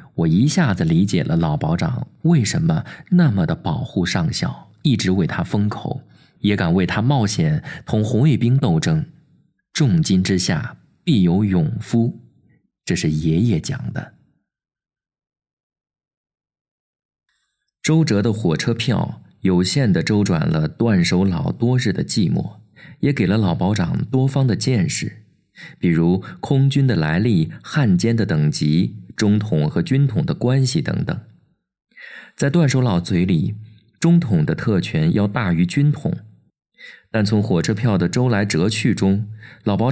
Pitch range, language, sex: 105-160 Hz, Chinese, male